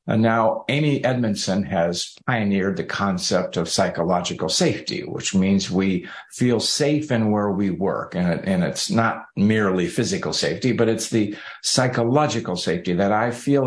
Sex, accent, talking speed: male, American, 155 wpm